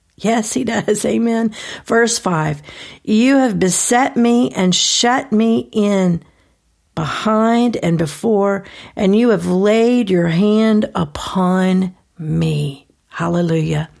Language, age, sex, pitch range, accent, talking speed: English, 50-69, female, 175-225 Hz, American, 110 wpm